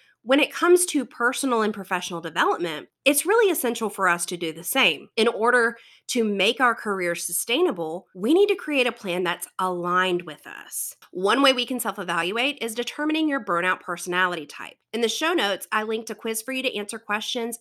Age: 30-49